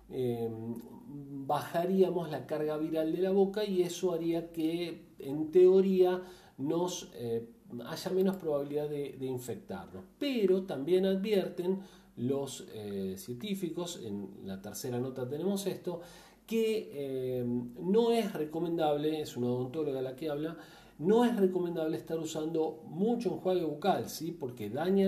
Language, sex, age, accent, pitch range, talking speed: Spanish, male, 40-59, Argentinian, 125-185 Hz, 130 wpm